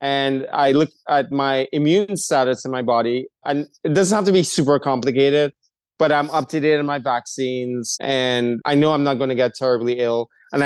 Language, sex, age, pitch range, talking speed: English, male, 30-49, 125-150 Hz, 210 wpm